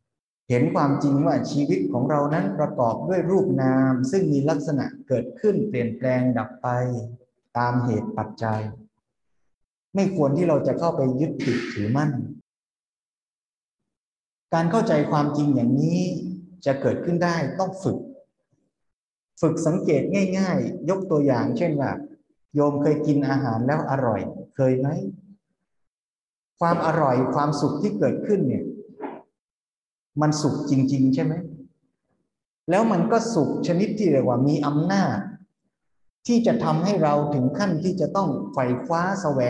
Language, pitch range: Thai, 130-175 Hz